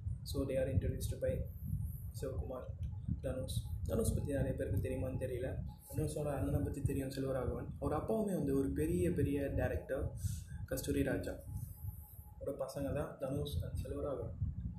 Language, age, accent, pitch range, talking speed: Tamil, 20-39, native, 95-135 Hz, 155 wpm